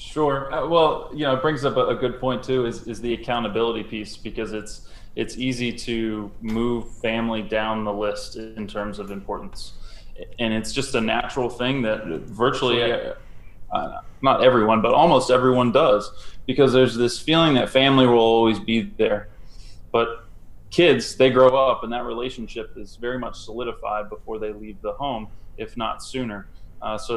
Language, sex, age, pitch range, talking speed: English, male, 20-39, 105-125 Hz, 175 wpm